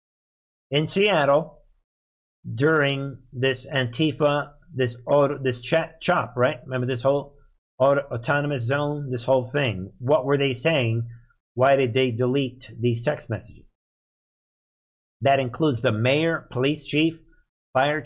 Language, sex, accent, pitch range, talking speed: English, male, American, 125-155 Hz, 125 wpm